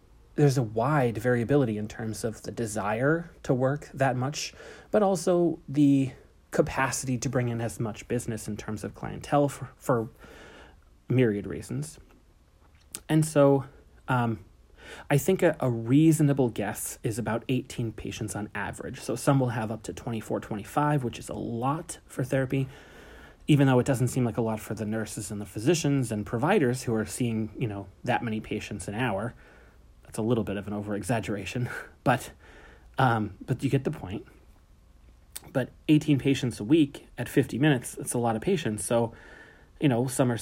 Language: English